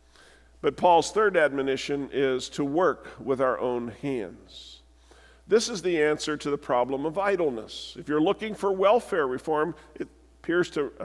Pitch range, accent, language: 150-195 Hz, American, English